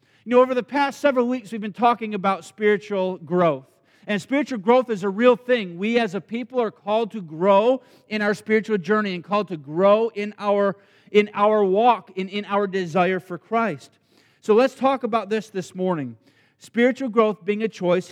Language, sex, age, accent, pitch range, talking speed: English, male, 50-69, American, 200-255 Hz, 200 wpm